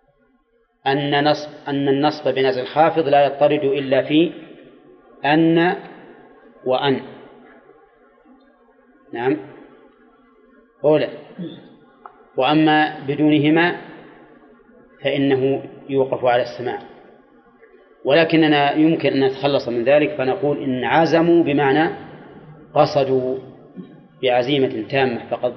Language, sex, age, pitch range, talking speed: Arabic, male, 30-49, 135-160 Hz, 80 wpm